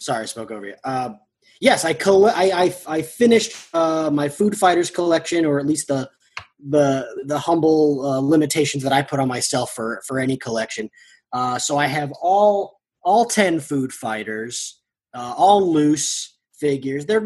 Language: English